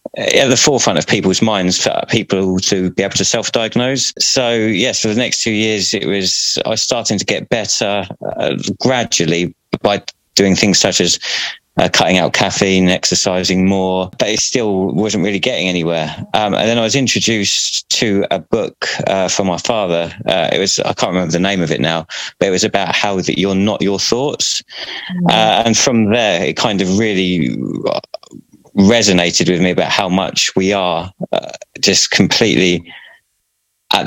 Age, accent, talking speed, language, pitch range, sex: 20-39, British, 180 wpm, English, 90-105 Hz, male